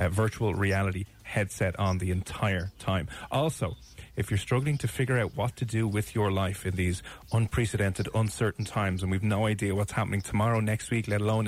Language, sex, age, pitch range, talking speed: English, male, 30-49, 100-125 Hz, 190 wpm